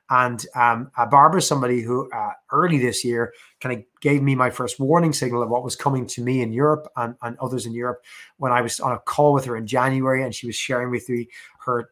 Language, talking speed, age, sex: English, 235 wpm, 20-39, male